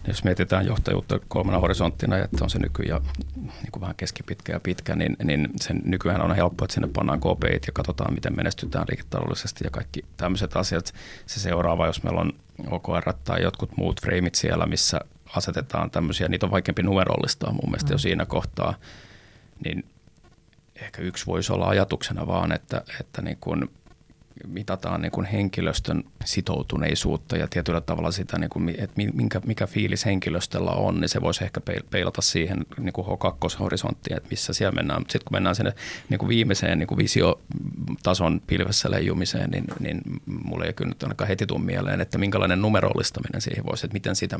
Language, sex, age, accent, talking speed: Finnish, male, 30-49, native, 165 wpm